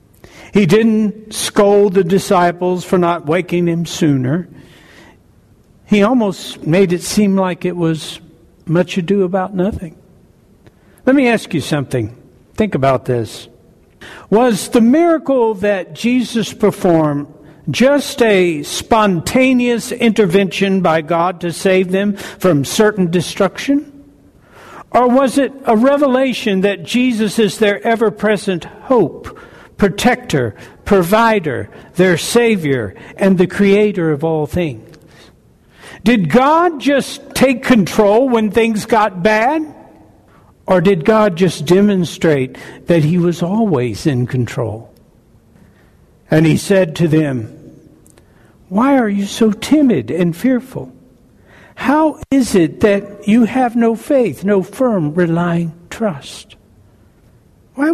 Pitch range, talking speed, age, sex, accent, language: 165-225 Hz, 120 wpm, 60-79, male, American, English